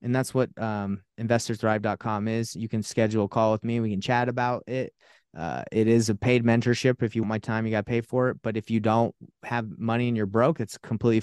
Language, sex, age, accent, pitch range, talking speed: English, male, 30-49, American, 110-125 Hz, 245 wpm